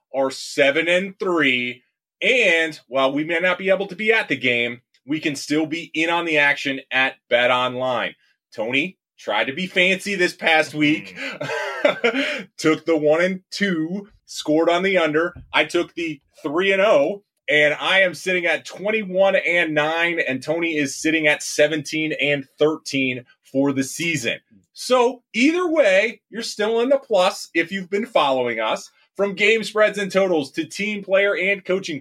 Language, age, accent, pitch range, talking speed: English, 30-49, American, 135-190 Hz, 175 wpm